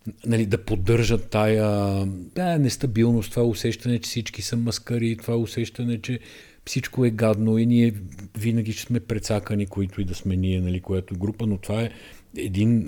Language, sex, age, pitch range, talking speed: Bulgarian, male, 50-69, 95-115 Hz, 170 wpm